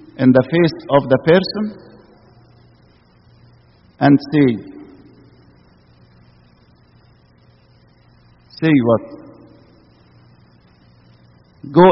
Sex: male